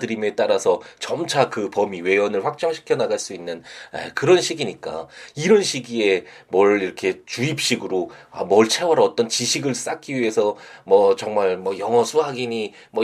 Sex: male